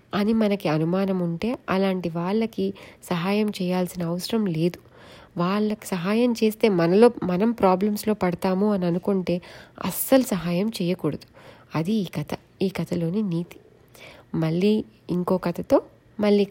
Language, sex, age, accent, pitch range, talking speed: Telugu, female, 30-49, native, 175-210 Hz, 115 wpm